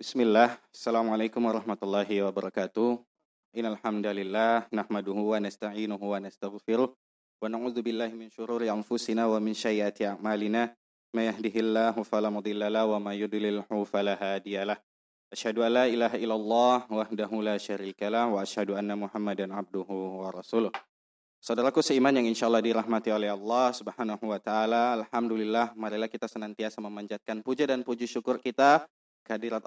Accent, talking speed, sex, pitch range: native, 125 wpm, male, 105-120 Hz